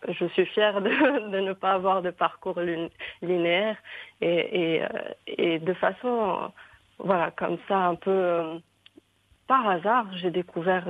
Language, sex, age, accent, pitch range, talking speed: English, female, 40-59, French, 175-215 Hz, 150 wpm